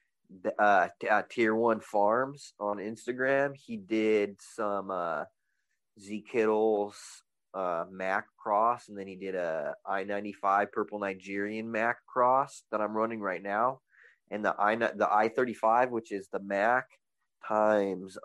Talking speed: 135 wpm